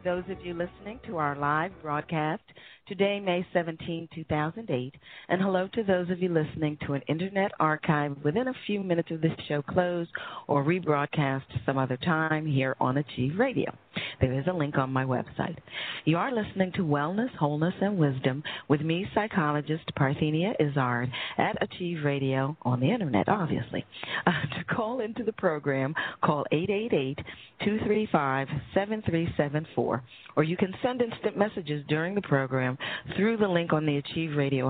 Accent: American